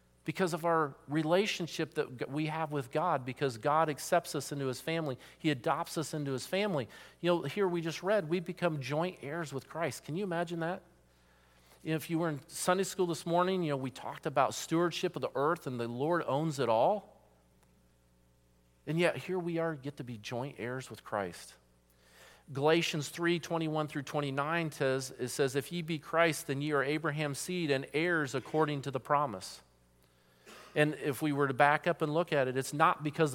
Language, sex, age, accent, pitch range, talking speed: English, male, 40-59, American, 125-165 Hz, 200 wpm